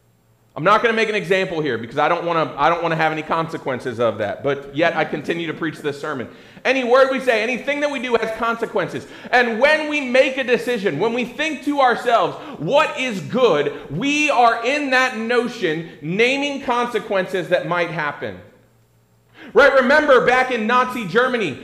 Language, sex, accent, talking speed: English, male, American, 185 wpm